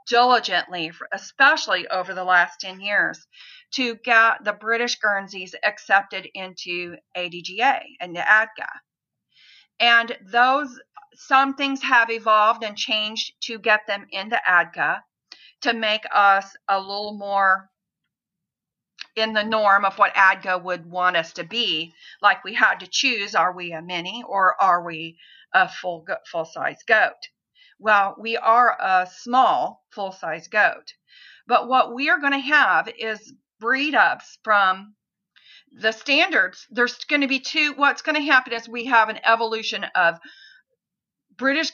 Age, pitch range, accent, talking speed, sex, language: 50-69, 195-255 Hz, American, 140 wpm, female, English